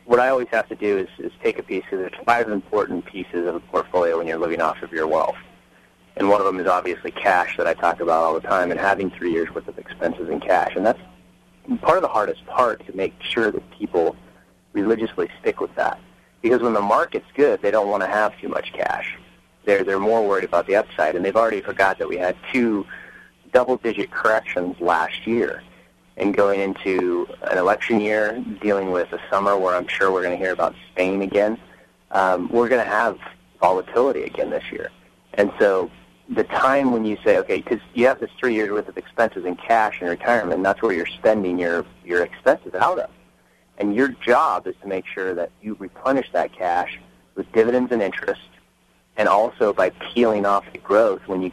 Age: 30-49